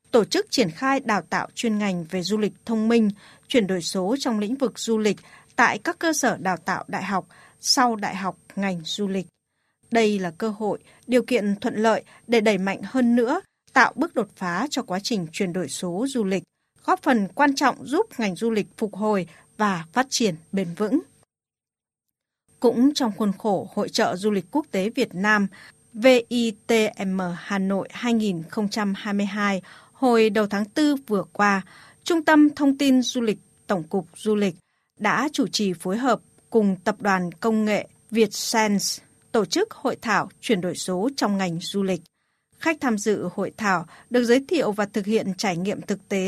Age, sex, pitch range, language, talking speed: 20-39, female, 190-240 Hz, Vietnamese, 185 wpm